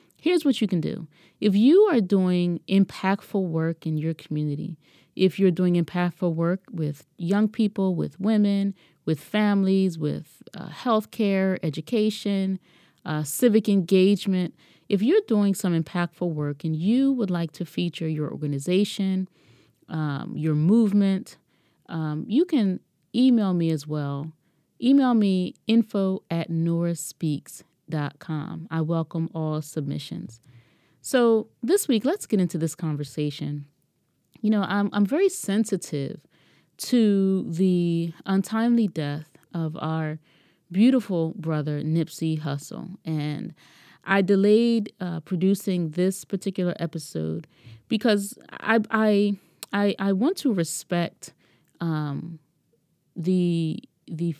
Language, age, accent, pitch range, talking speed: English, 30-49, American, 160-205 Hz, 125 wpm